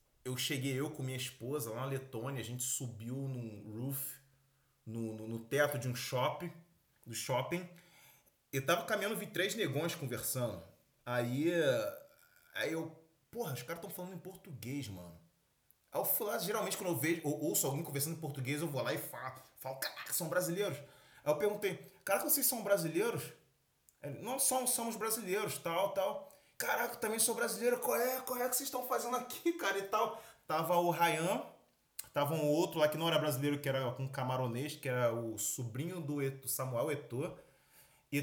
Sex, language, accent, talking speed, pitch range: male, Portuguese, Brazilian, 180 wpm, 135-215 Hz